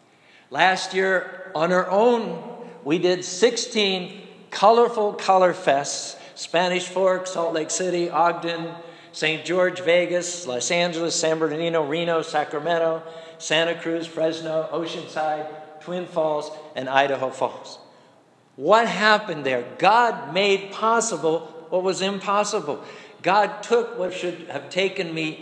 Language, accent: English, American